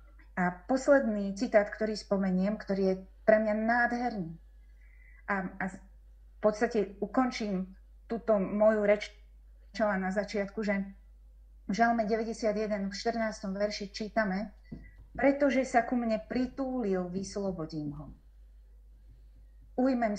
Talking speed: 105 wpm